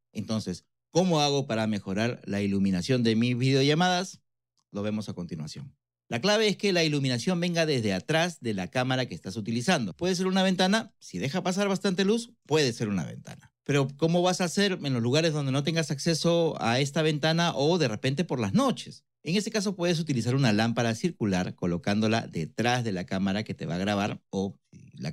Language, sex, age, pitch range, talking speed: Spanish, male, 40-59, 110-155 Hz, 200 wpm